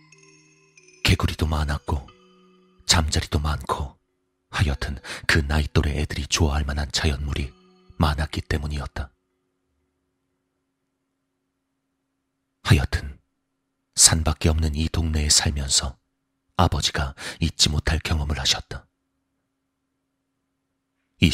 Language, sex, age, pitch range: Korean, male, 40-59, 75-90 Hz